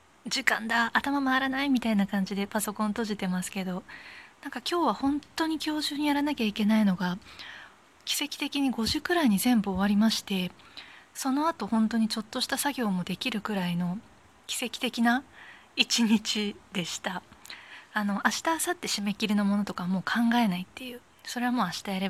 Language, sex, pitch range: Japanese, female, 195-240 Hz